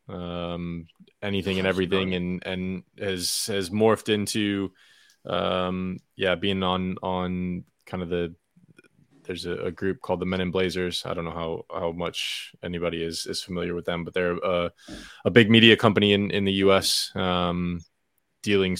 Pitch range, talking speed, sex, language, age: 90-105 Hz, 165 wpm, male, English, 20-39